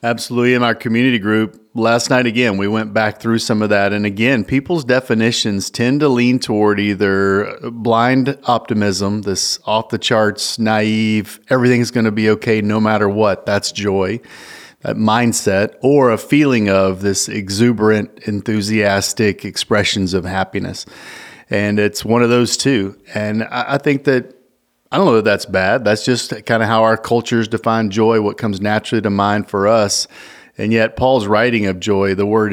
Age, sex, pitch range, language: 40-59, male, 100-120 Hz, English